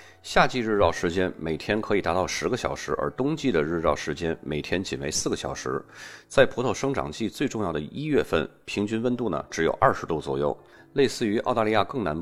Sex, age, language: male, 30-49, Chinese